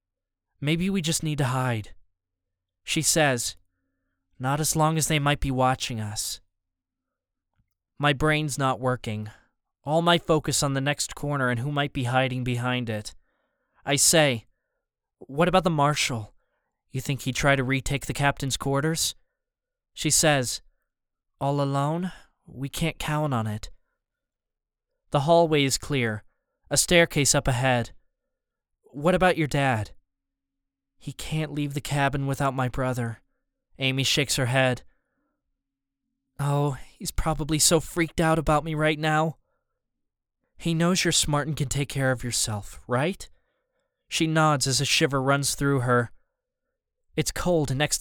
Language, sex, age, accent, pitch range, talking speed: English, male, 20-39, American, 120-155 Hz, 145 wpm